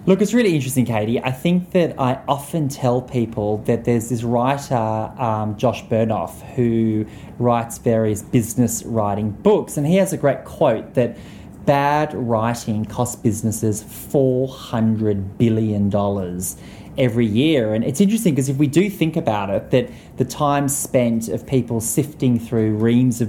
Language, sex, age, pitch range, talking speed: English, male, 20-39, 110-135 Hz, 155 wpm